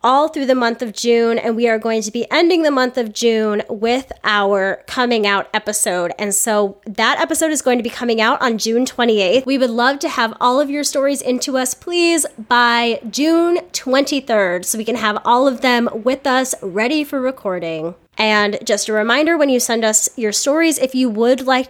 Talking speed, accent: 210 wpm, American